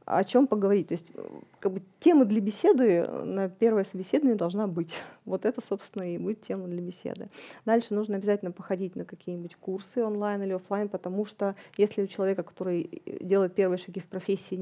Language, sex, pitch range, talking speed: Russian, female, 180-210 Hz, 180 wpm